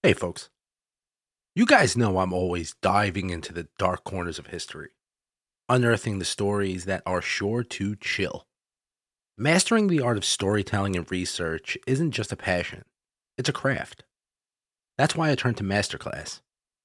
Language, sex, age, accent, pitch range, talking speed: English, male, 30-49, American, 95-125 Hz, 150 wpm